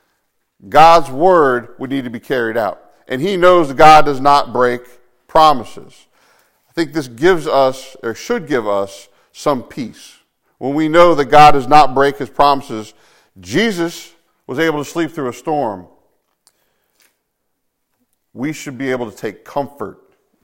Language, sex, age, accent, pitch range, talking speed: English, male, 50-69, American, 135-175 Hz, 155 wpm